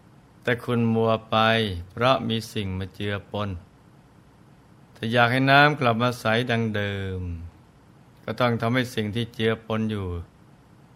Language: Thai